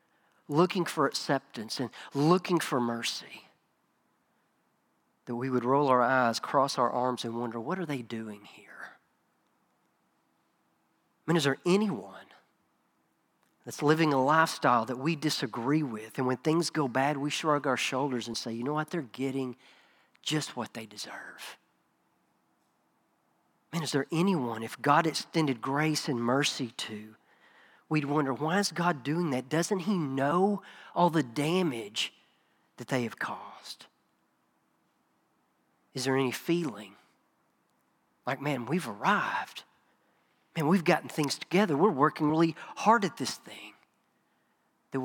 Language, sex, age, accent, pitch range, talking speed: English, male, 40-59, American, 125-160 Hz, 140 wpm